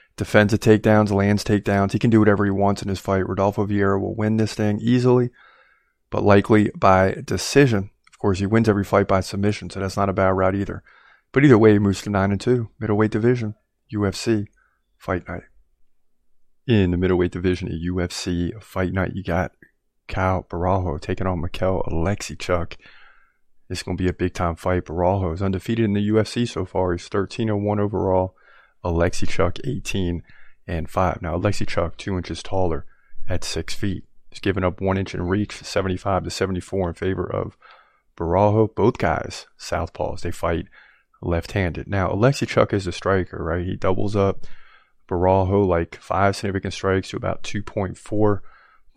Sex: male